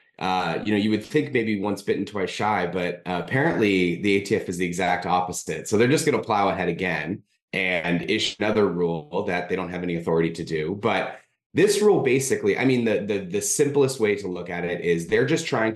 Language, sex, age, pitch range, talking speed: English, male, 20-39, 85-115 Hz, 225 wpm